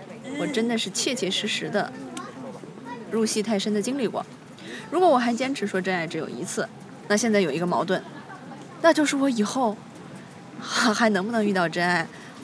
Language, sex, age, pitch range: Chinese, female, 20-39, 190-240 Hz